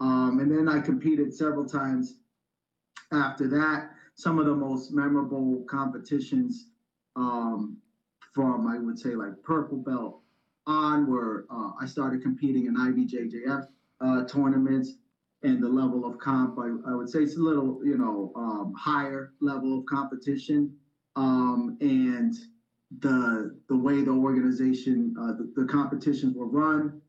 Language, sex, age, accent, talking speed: English, male, 30-49, American, 145 wpm